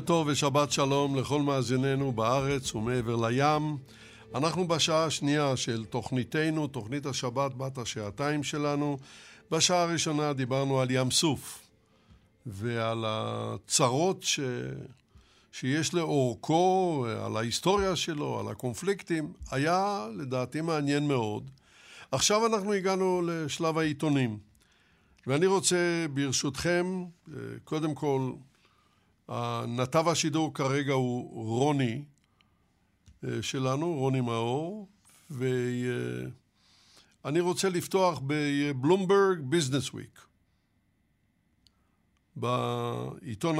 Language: Hebrew